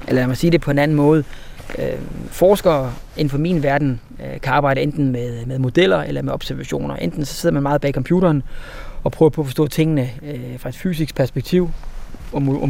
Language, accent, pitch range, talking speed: Danish, native, 130-155 Hz, 185 wpm